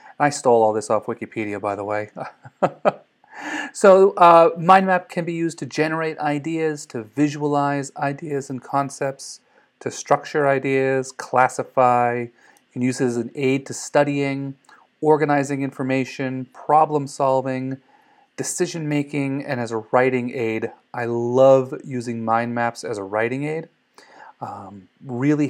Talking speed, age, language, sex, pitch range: 135 wpm, 30-49, English, male, 115-145 Hz